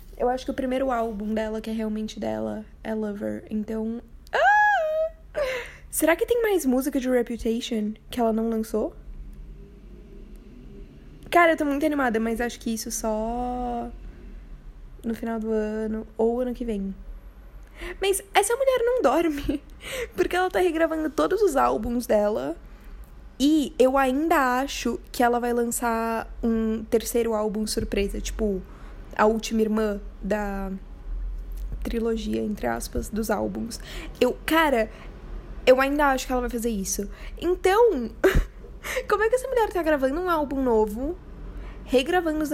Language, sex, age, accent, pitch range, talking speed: Portuguese, female, 10-29, Brazilian, 215-295 Hz, 145 wpm